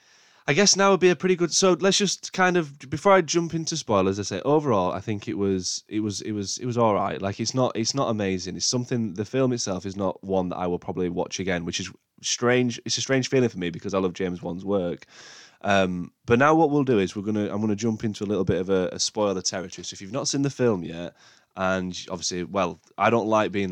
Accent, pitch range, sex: British, 90-125 Hz, male